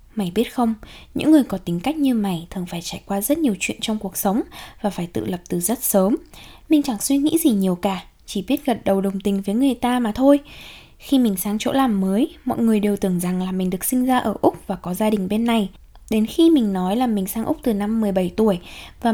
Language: Vietnamese